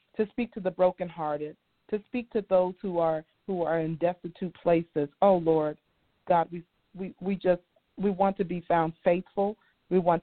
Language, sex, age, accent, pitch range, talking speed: English, female, 40-59, American, 150-180 Hz, 180 wpm